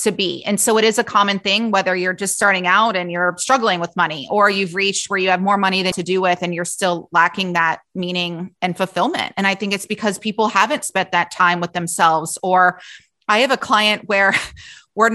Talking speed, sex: 230 wpm, female